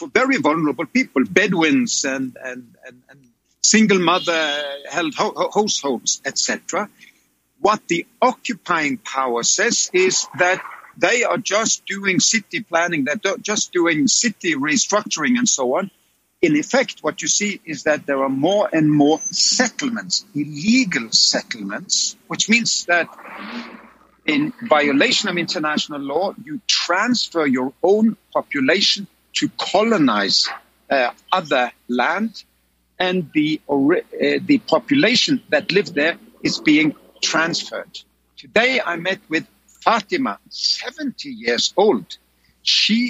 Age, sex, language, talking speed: 60-79, male, English, 120 wpm